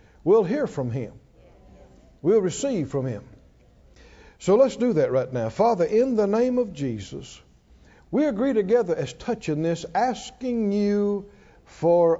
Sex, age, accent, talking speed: male, 60-79, American, 145 wpm